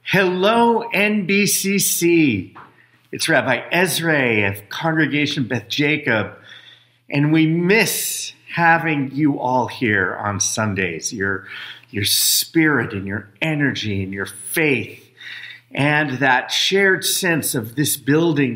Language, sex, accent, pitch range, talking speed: English, male, American, 105-140 Hz, 110 wpm